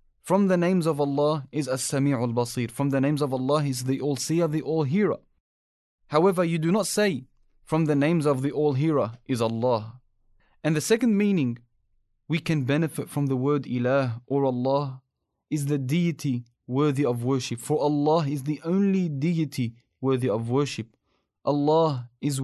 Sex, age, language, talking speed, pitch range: male, 20-39, English, 160 wpm, 125-155 Hz